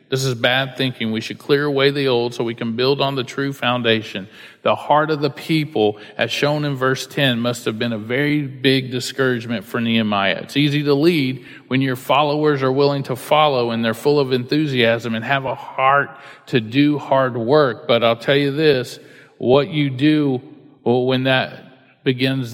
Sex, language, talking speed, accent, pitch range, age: male, English, 190 wpm, American, 125-145 Hz, 40-59